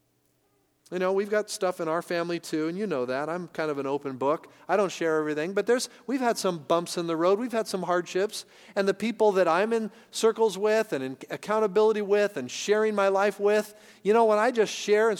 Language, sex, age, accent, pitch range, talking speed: English, male, 50-69, American, 135-205 Hz, 235 wpm